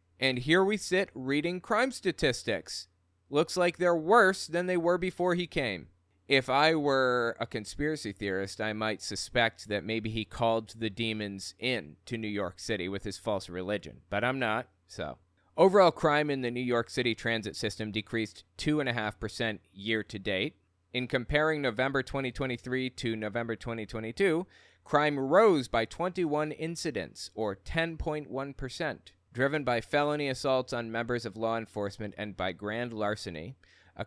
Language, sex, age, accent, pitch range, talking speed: English, male, 20-39, American, 100-130 Hz, 155 wpm